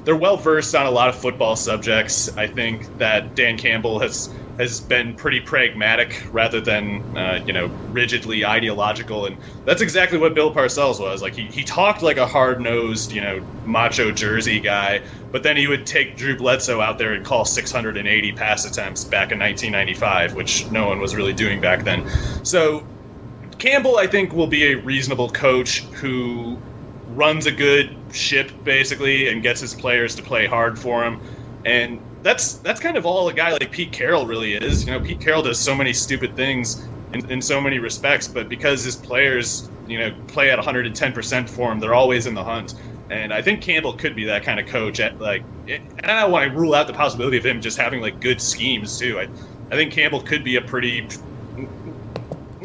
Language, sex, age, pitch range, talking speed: English, male, 30-49, 110-135 Hz, 200 wpm